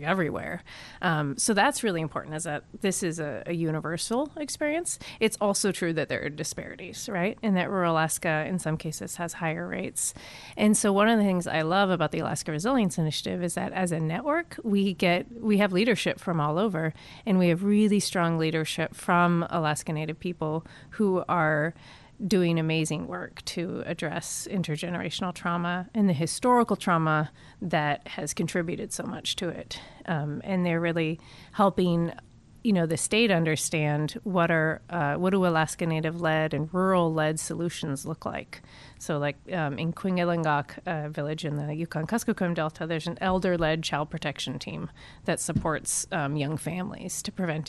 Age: 30-49